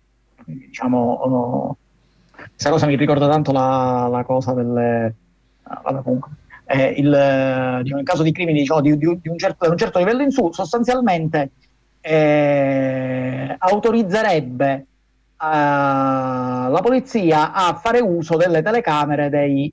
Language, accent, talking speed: Italian, native, 130 wpm